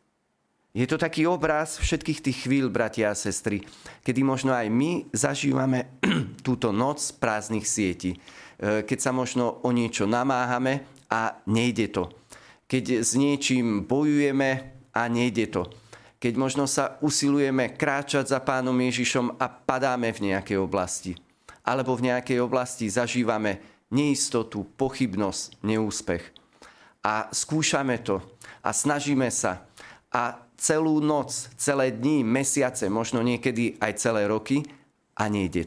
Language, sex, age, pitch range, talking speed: Slovak, male, 40-59, 110-140 Hz, 125 wpm